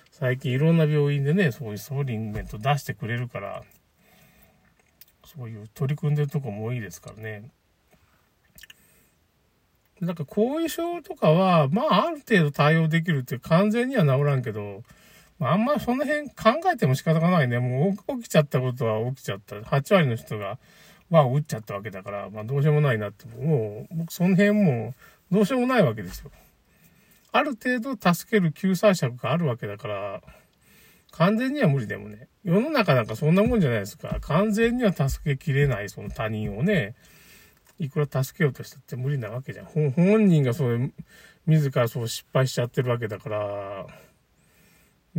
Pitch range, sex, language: 120-190 Hz, male, Japanese